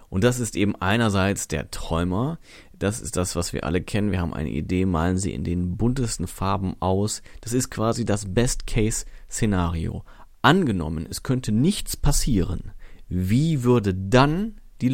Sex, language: male, German